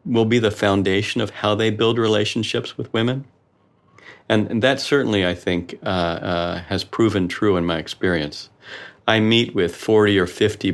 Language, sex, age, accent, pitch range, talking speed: English, male, 50-69, American, 90-115 Hz, 175 wpm